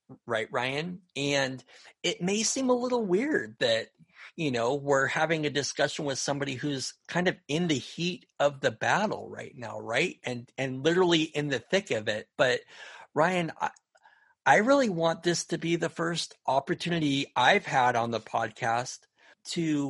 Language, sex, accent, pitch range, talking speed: English, male, American, 125-170 Hz, 170 wpm